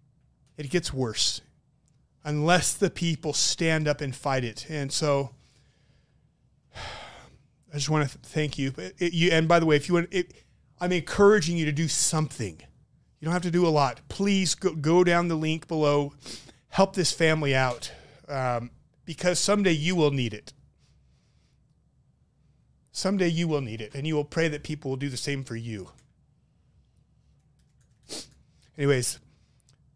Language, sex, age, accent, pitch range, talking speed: English, male, 30-49, American, 135-165 Hz, 160 wpm